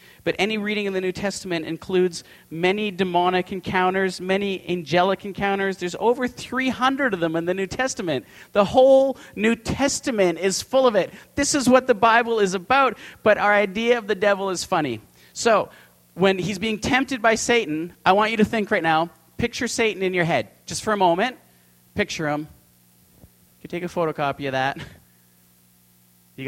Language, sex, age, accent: English, male, 40-59, American